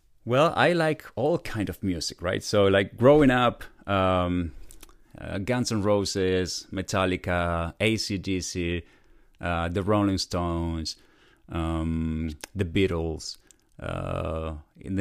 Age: 30-49